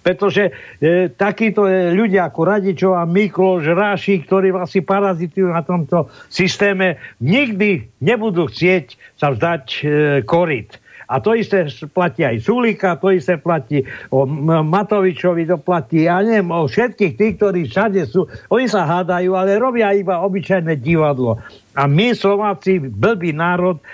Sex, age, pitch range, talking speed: male, 60-79, 150-195 Hz, 140 wpm